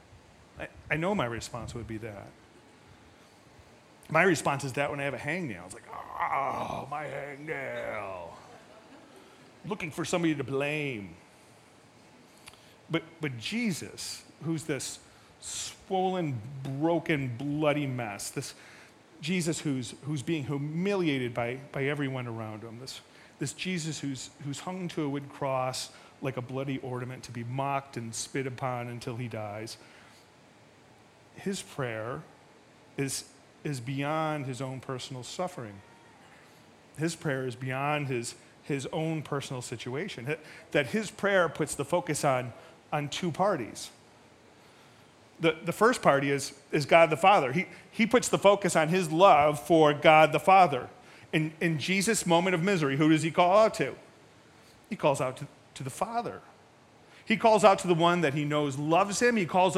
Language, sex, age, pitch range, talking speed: English, male, 30-49, 130-170 Hz, 150 wpm